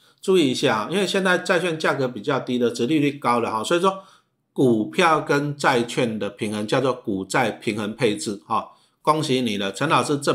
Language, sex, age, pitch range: Chinese, male, 50-69, 120-165 Hz